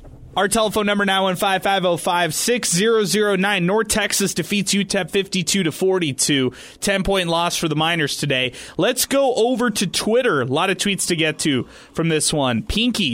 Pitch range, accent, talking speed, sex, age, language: 150-205 Hz, American, 145 wpm, male, 20-39, English